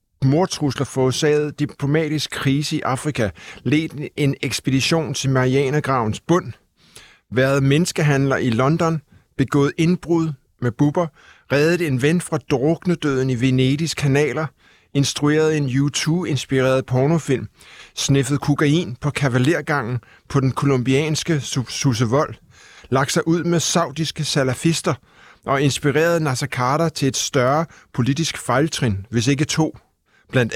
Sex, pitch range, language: male, 130-165 Hz, Danish